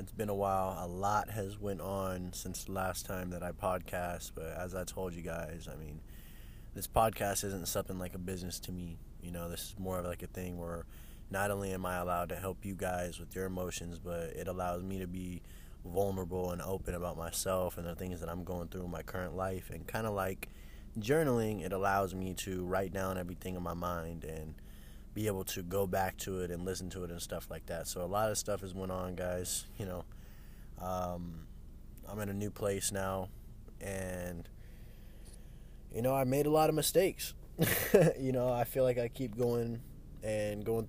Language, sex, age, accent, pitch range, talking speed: English, male, 20-39, American, 90-100 Hz, 215 wpm